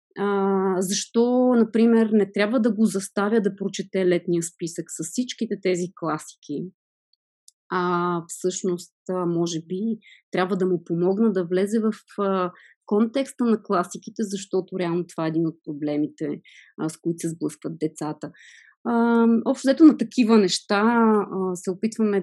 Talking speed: 145 wpm